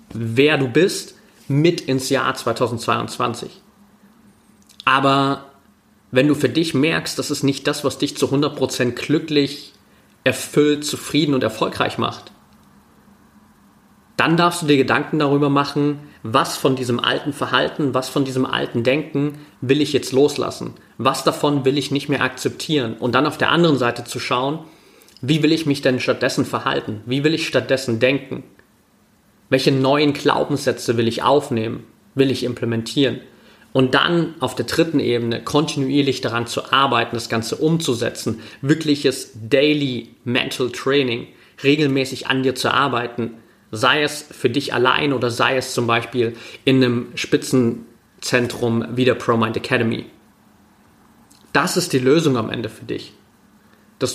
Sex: male